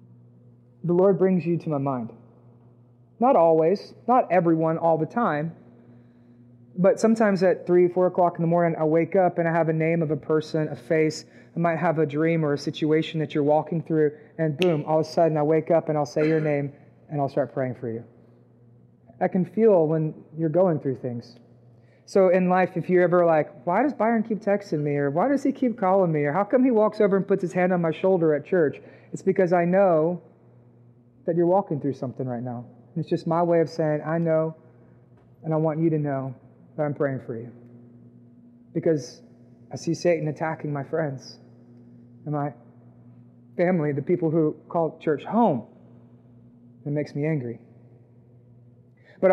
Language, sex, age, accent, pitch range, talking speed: English, male, 30-49, American, 120-175 Hz, 195 wpm